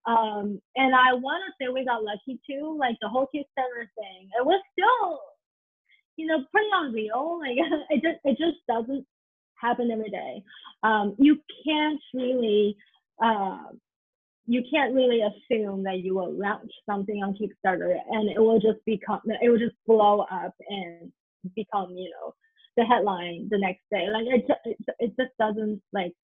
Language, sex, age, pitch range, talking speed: English, female, 20-39, 210-265 Hz, 165 wpm